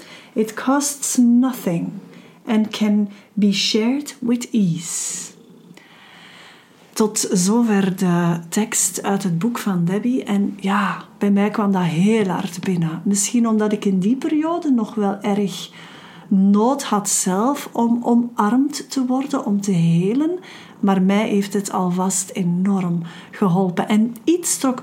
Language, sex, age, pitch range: Dutch, female, 40-59, 190-240 Hz